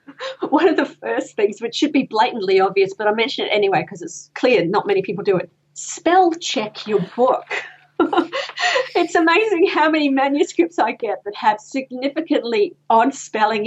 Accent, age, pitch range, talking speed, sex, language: Australian, 40-59, 190-295 Hz, 170 wpm, female, English